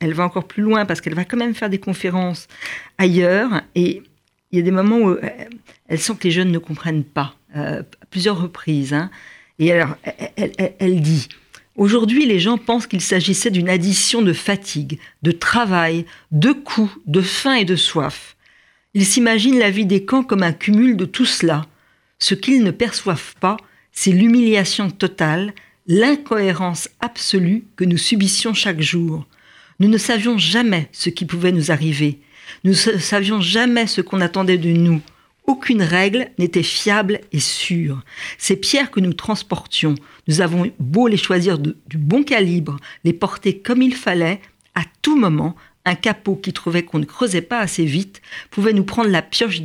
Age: 50-69